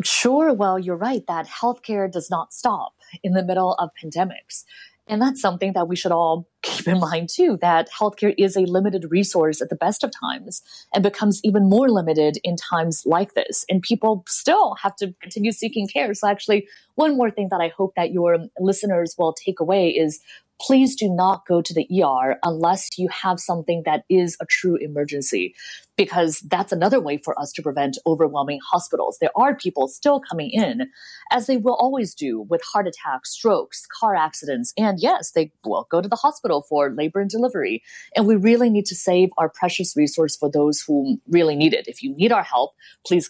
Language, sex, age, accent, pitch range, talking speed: English, female, 30-49, American, 165-220 Hz, 200 wpm